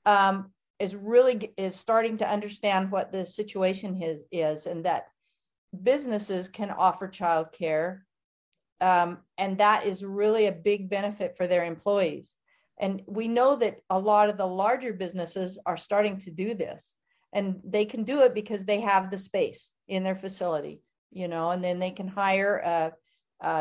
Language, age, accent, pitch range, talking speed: English, 50-69, American, 185-215 Hz, 170 wpm